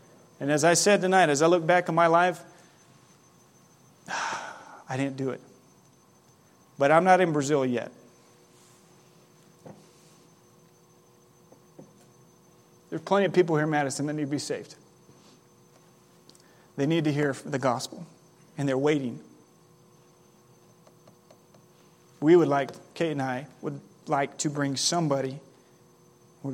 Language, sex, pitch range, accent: English, male, 140-180 Hz, American